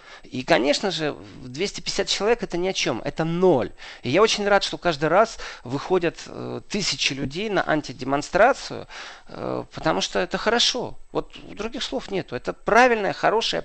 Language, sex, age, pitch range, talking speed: Russian, male, 40-59, 130-180 Hz, 150 wpm